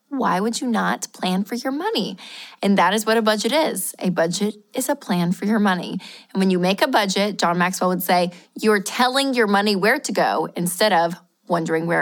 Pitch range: 185-235 Hz